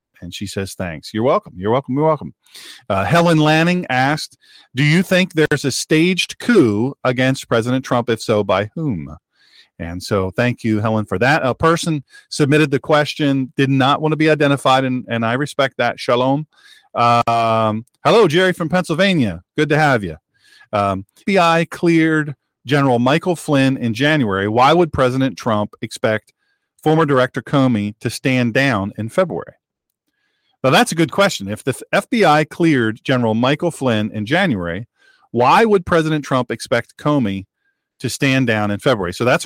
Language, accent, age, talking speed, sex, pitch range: English, American, 40-59, 165 wpm, male, 115-165 Hz